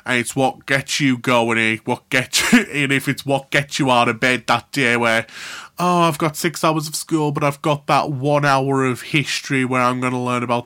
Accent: British